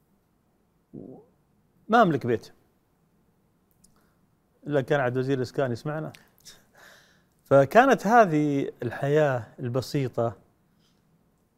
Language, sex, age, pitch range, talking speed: Arabic, male, 40-59, 120-170 Hz, 65 wpm